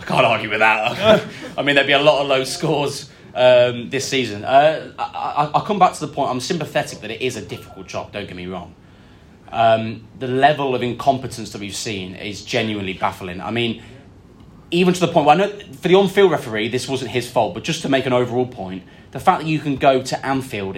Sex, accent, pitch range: male, British, 105-140 Hz